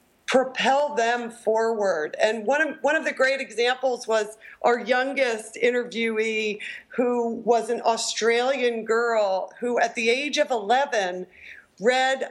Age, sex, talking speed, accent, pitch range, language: 40-59, female, 130 wpm, American, 215-255 Hz, English